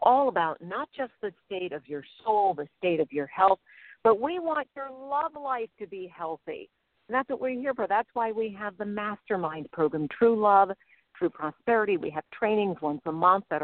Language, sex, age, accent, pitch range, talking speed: English, female, 50-69, American, 175-235 Hz, 205 wpm